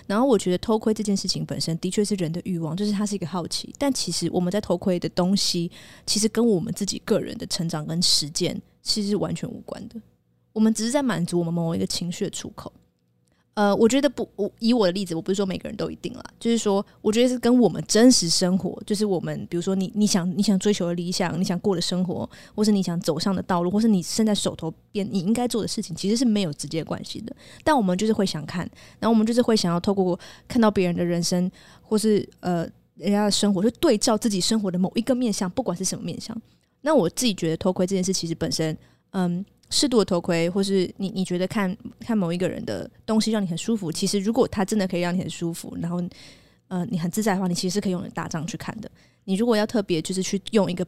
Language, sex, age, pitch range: Chinese, female, 20-39, 175-215 Hz